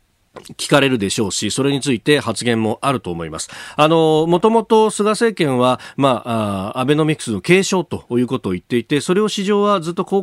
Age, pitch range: 40-59, 105-170 Hz